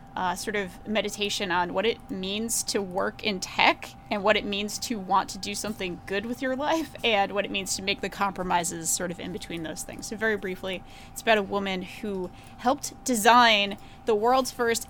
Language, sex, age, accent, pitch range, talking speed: English, female, 20-39, American, 190-235 Hz, 210 wpm